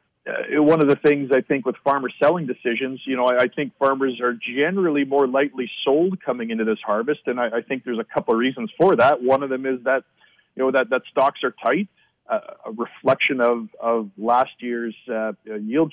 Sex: male